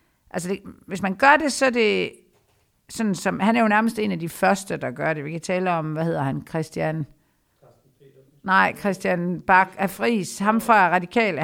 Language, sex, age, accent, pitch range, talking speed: Danish, female, 60-79, native, 175-220 Hz, 200 wpm